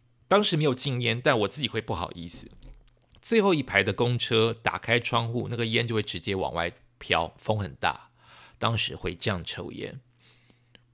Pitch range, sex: 120-155 Hz, male